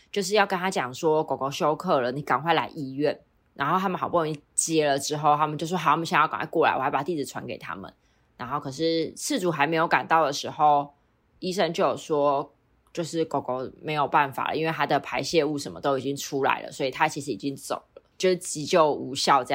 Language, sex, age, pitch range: Chinese, female, 20-39, 140-170 Hz